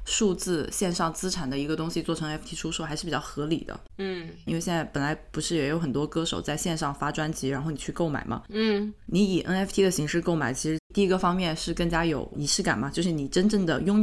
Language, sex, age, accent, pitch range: Chinese, female, 20-39, native, 155-185 Hz